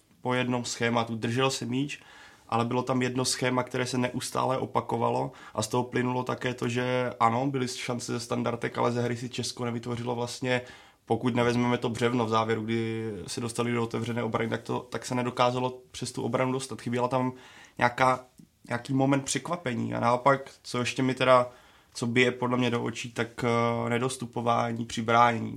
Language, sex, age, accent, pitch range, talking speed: Czech, male, 20-39, native, 115-125 Hz, 175 wpm